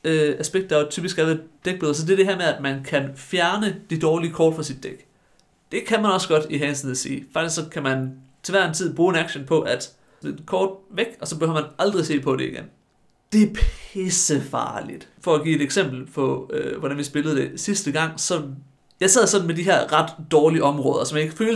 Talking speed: 235 wpm